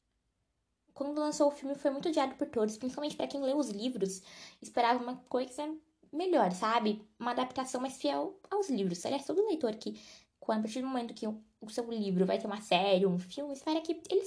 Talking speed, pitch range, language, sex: 200 wpm, 215-315 Hz, Portuguese, female